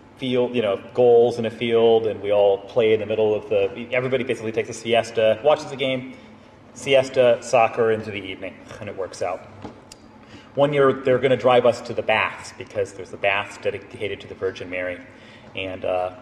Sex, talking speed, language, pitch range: male, 195 wpm, English, 110-150 Hz